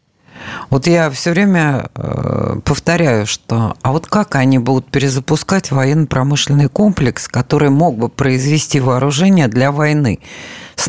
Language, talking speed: Russian, 120 wpm